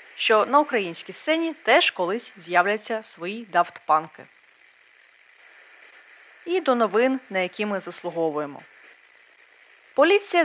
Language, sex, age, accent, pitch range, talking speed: Ukrainian, female, 20-39, native, 190-310 Hz, 100 wpm